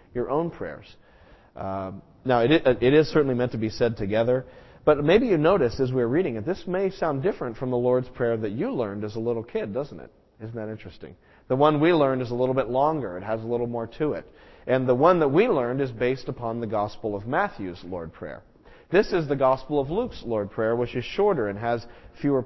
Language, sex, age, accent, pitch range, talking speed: English, male, 40-59, American, 110-135 Hz, 230 wpm